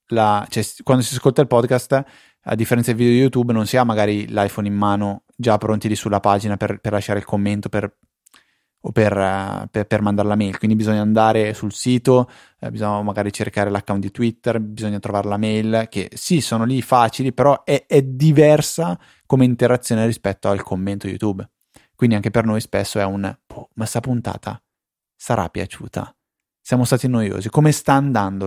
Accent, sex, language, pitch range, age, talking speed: native, male, Italian, 100-125 Hz, 20-39, 180 wpm